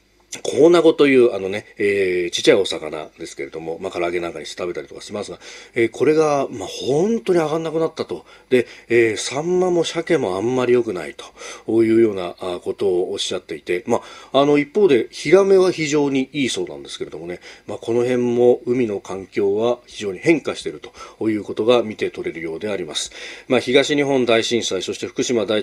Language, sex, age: Japanese, male, 40-59